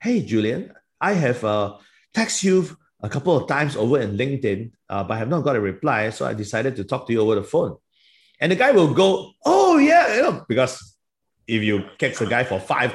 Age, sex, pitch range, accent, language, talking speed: 30-49, male, 95-125 Hz, Malaysian, English, 225 wpm